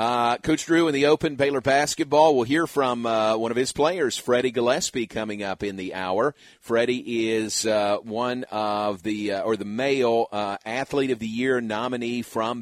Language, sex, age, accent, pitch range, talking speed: English, male, 40-59, American, 100-115 Hz, 190 wpm